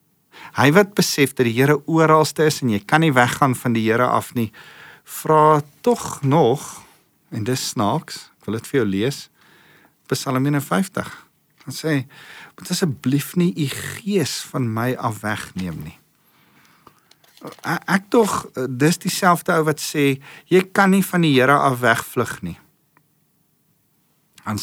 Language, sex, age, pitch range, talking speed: English, male, 50-69, 110-155 Hz, 155 wpm